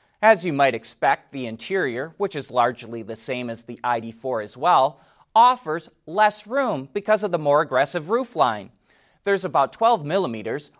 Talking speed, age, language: 165 wpm, 30-49, English